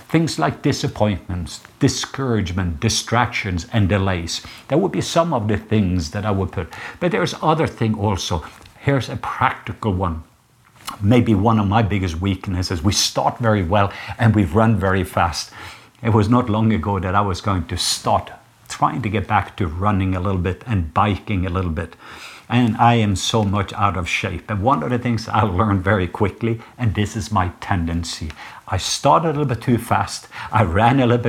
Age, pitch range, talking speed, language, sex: 60-79, 95-115 Hz, 190 wpm, English, male